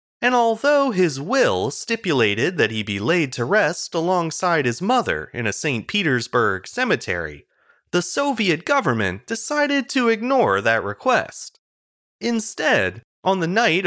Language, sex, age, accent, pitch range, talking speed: English, male, 30-49, American, 140-230 Hz, 135 wpm